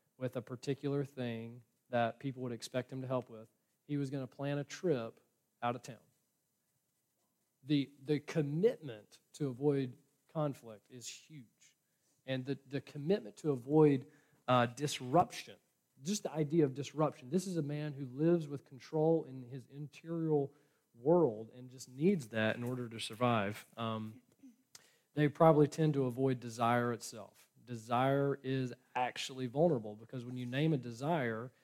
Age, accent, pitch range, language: 40-59, American, 120-150 Hz, English